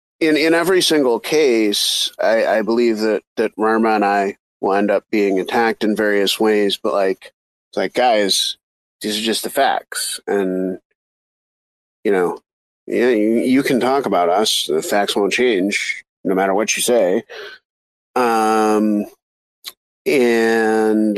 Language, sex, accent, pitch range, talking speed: English, male, American, 105-125 Hz, 145 wpm